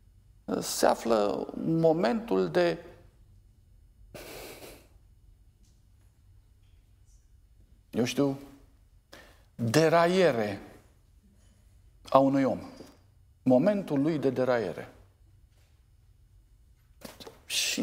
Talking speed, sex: 50 wpm, male